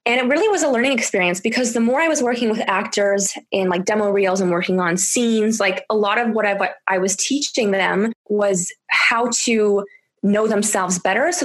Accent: American